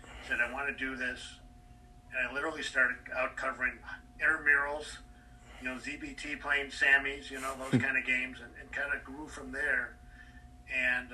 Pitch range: 120-140 Hz